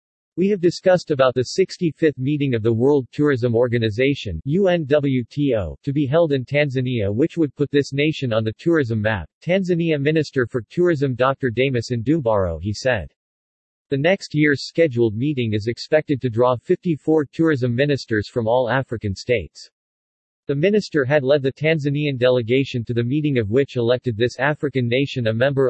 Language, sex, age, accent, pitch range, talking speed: English, male, 50-69, American, 120-150 Hz, 165 wpm